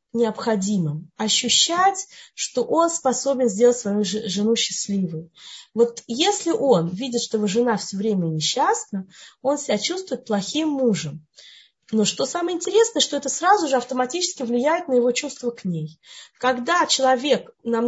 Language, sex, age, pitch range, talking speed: Russian, female, 20-39, 210-315 Hz, 140 wpm